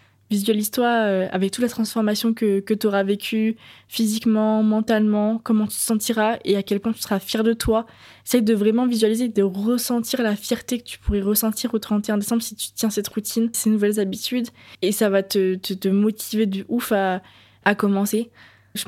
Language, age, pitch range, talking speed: French, 20-39, 200-235 Hz, 195 wpm